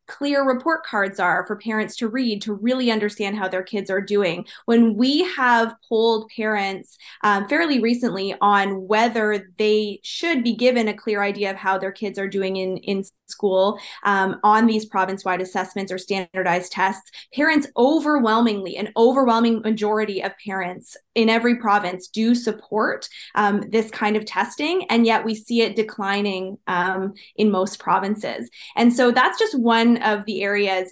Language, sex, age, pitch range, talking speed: English, female, 20-39, 200-235 Hz, 165 wpm